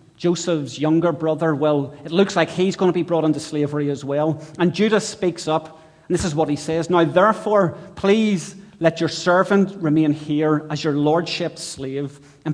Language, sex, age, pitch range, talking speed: English, male, 30-49, 140-165 Hz, 185 wpm